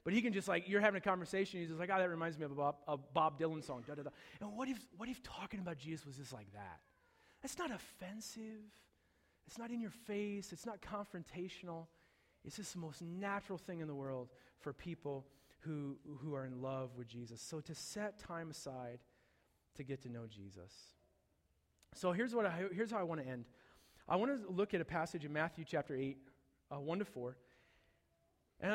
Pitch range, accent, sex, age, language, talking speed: 135-200 Hz, American, male, 30-49, English, 215 wpm